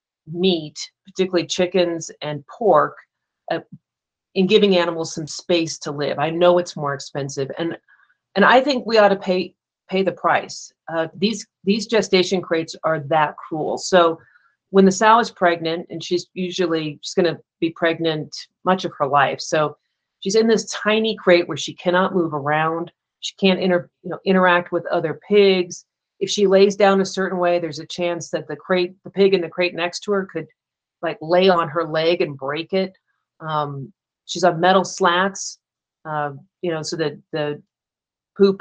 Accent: American